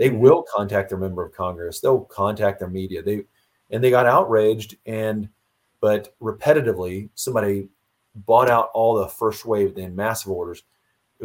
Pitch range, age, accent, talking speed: 100-125 Hz, 30-49, American, 160 wpm